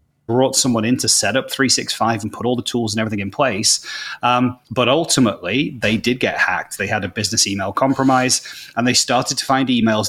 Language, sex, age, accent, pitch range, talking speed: English, male, 30-49, British, 110-140 Hz, 210 wpm